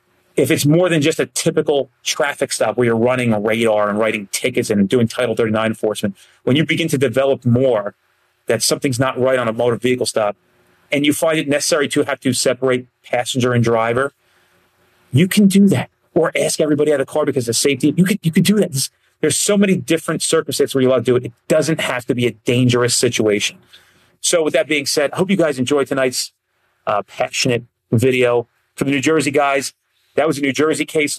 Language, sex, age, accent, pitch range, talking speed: English, male, 30-49, American, 120-155 Hz, 215 wpm